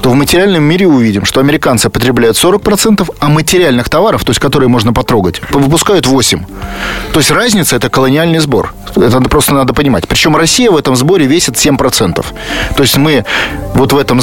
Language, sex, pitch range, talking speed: Russian, male, 125-170 Hz, 185 wpm